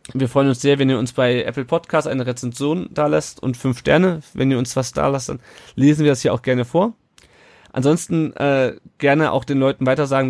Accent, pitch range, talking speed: German, 120-145 Hz, 215 wpm